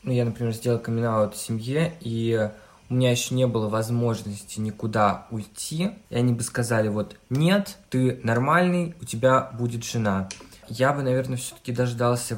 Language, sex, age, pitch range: Russian, male, 20-39, 110-130 Hz